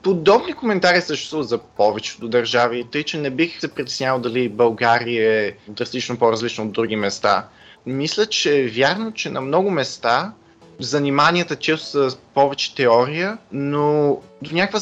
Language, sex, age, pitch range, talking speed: Bulgarian, male, 20-39, 120-160 Hz, 145 wpm